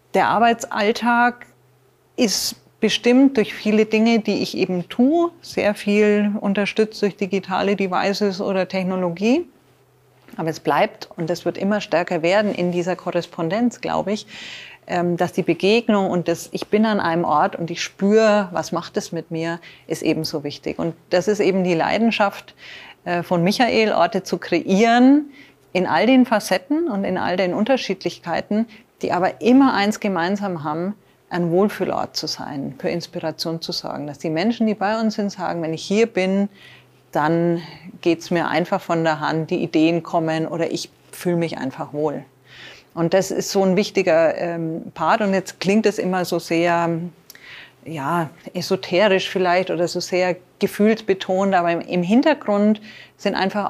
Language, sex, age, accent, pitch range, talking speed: German, female, 30-49, German, 170-210 Hz, 160 wpm